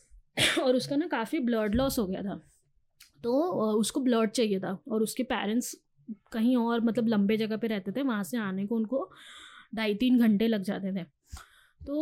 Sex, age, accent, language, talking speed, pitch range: female, 20-39, native, Hindi, 185 wpm, 215-270 Hz